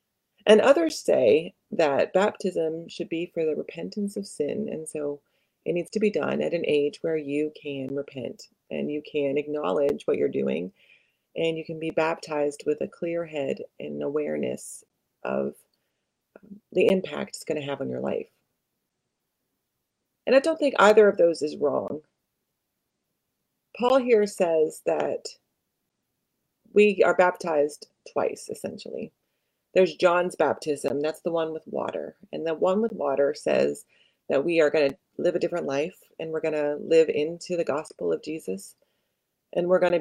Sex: female